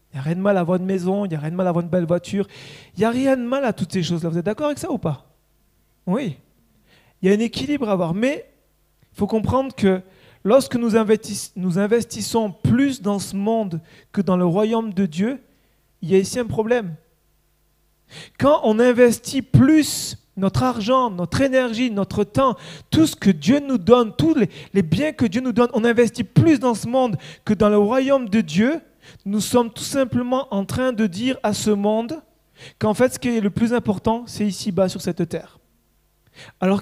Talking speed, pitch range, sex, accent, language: 215 wpm, 180-240 Hz, male, French, French